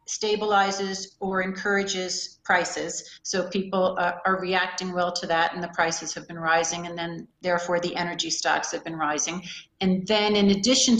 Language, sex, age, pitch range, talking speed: English, female, 40-59, 175-195 Hz, 170 wpm